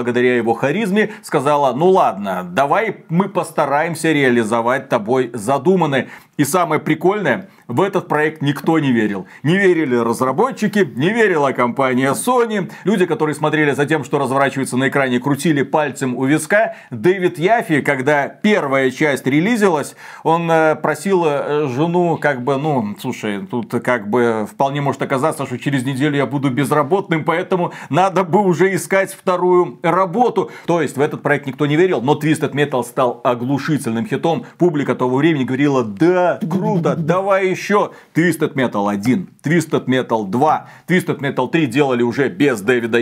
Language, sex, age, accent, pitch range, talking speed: Ukrainian, male, 40-59, native, 135-180 Hz, 150 wpm